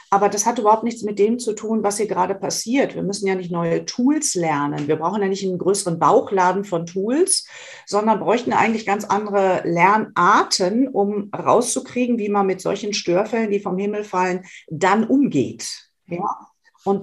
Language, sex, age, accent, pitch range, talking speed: German, female, 50-69, German, 180-230 Hz, 175 wpm